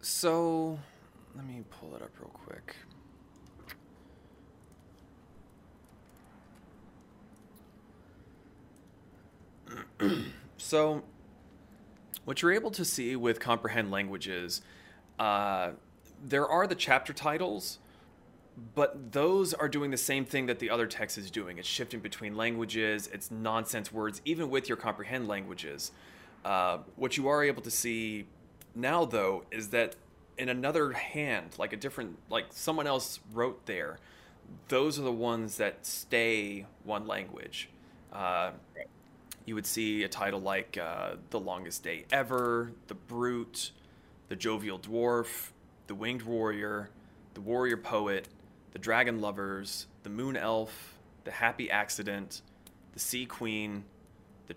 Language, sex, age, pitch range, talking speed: English, male, 20-39, 105-125 Hz, 125 wpm